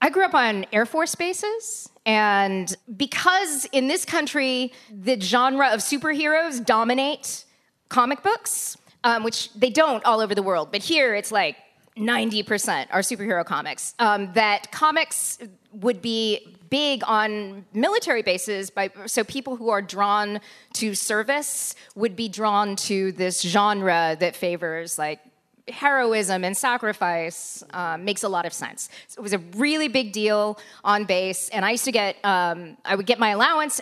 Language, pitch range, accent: English, 195-255 Hz, American